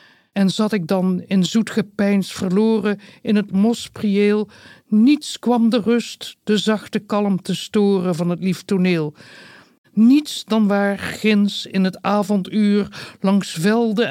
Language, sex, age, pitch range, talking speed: English, male, 60-79, 175-215 Hz, 135 wpm